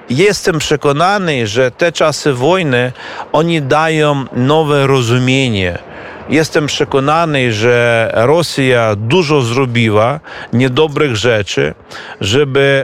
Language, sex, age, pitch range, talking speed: Polish, male, 40-59, 120-155 Hz, 90 wpm